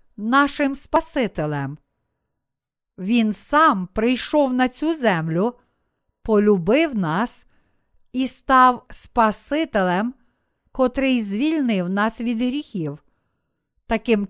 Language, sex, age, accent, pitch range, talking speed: Ukrainian, female, 50-69, native, 195-270 Hz, 80 wpm